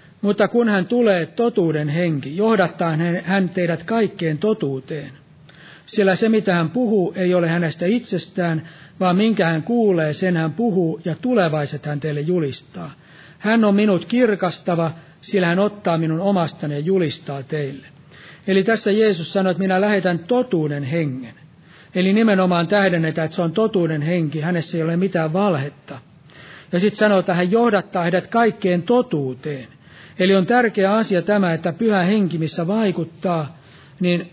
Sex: male